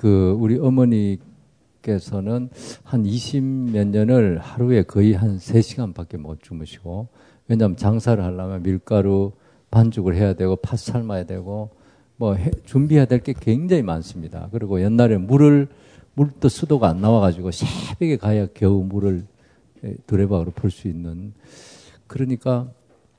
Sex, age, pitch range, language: male, 50-69, 95-125 Hz, Korean